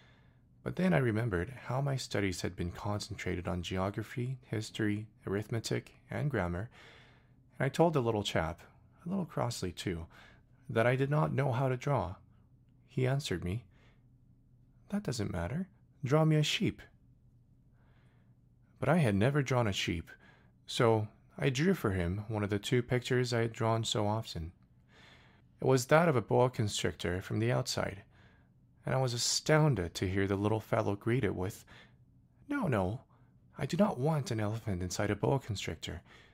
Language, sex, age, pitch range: Korean, male, 30-49, 105-135 Hz